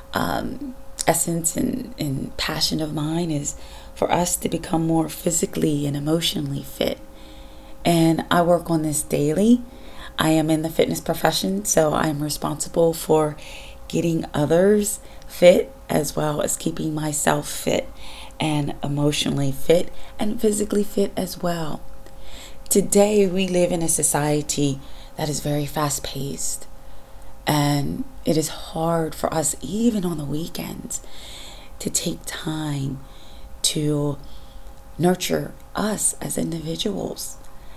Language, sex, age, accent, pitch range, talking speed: English, female, 30-49, American, 145-175 Hz, 125 wpm